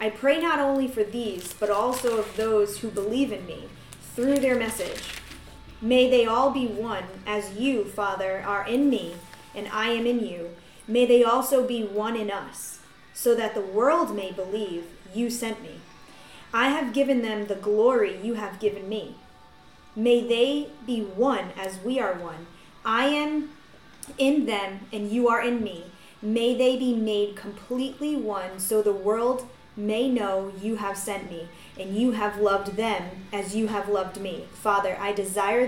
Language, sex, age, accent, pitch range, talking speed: English, female, 20-39, American, 195-240 Hz, 175 wpm